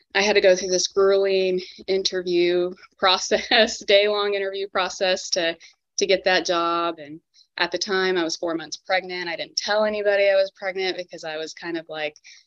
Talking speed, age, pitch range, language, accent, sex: 190 wpm, 20-39, 170-210 Hz, English, American, female